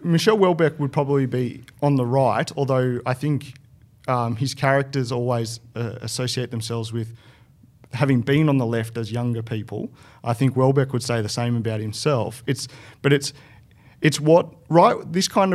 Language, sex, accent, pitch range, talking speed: English, male, Australian, 110-135 Hz, 170 wpm